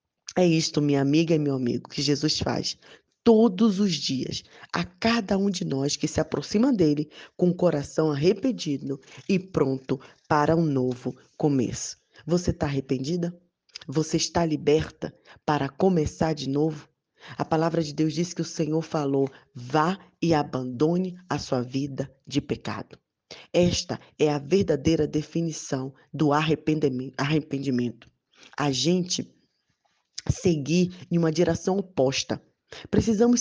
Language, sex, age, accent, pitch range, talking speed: Portuguese, female, 20-39, Brazilian, 140-175 Hz, 135 wpm